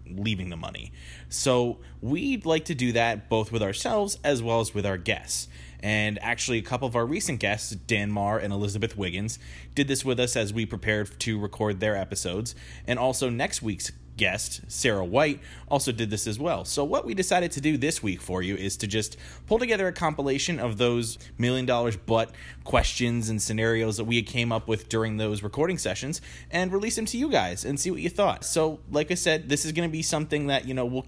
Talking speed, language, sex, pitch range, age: 220 wpm, English, male, 105-135 Hz, 20-39